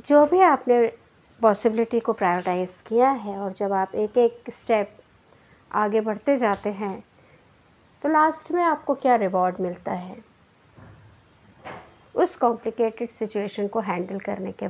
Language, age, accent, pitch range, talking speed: Hindi, 50-69, native, 200-270 Hz, 135 wpm